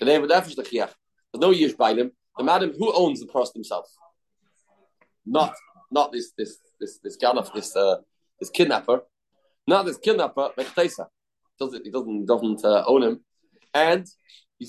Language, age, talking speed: English, 40-59, 135 wpm